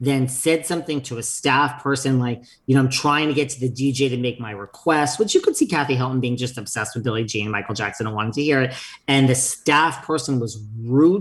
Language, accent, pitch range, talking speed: English, American, 120-145 Hz, 250 wpm